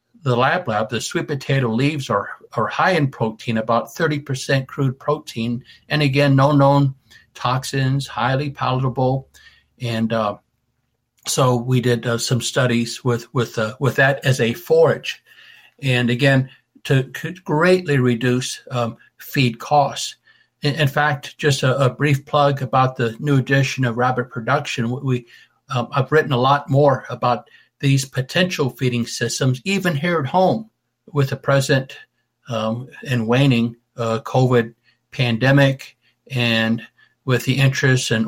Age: 60-79